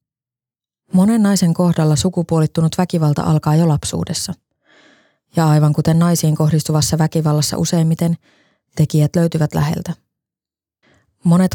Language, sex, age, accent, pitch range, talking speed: Finnish, female, 20-39, native, 150-165 Hz, 100 wpm